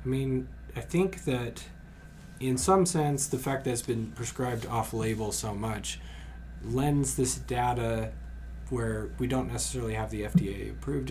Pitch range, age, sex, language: 100-120 Hz, 20-39, male, English